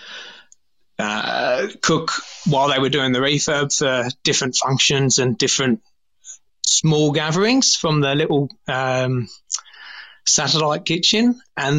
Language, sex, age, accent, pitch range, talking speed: English, male, 20-39, British, 145-165 Hz, 110 wpm